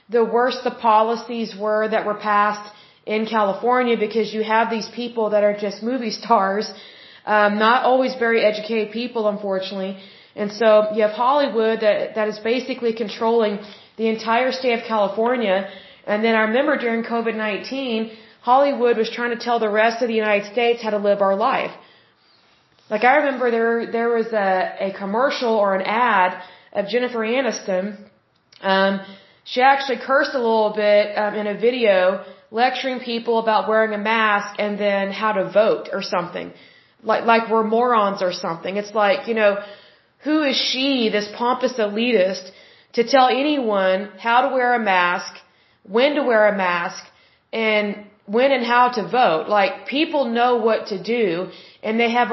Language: Hindi